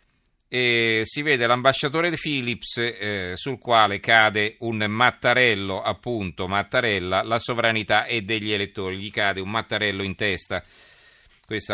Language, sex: Italian, male